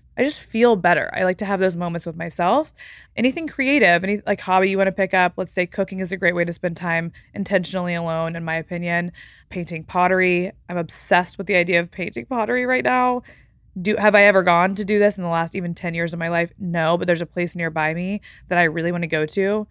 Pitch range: 170-205 Hz